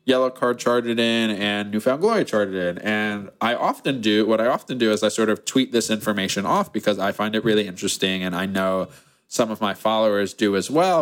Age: 20-39